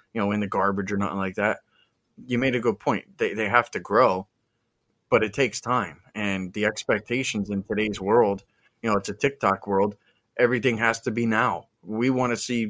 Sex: male